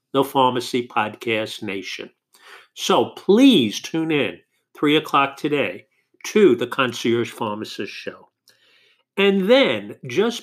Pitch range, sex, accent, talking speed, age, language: 125-205 Hz, male, American, 110 wpm, 50-69, English